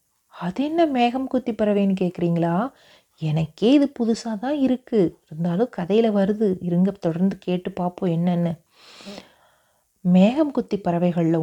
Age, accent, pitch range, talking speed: 30-49, native, 170-225 Hz, 115 wpm